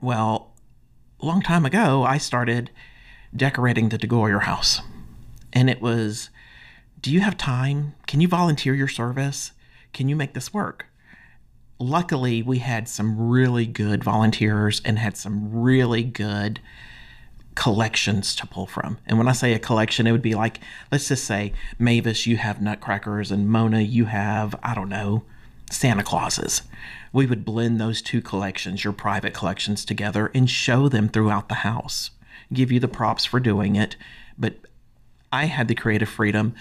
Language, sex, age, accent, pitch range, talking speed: English, male, 40-59, American, 105-125 Hz, 160 wpm